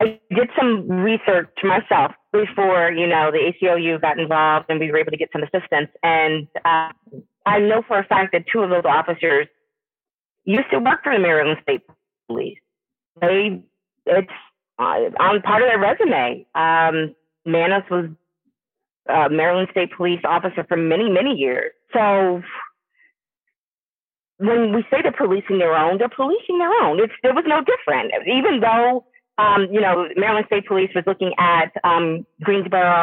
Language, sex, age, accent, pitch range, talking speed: English, female, 30-49, American, 165-215 Hz, 165 wpm